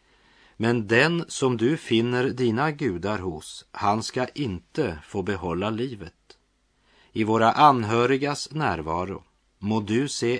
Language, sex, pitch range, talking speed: French, male, 95-120 Hz, 120 wpm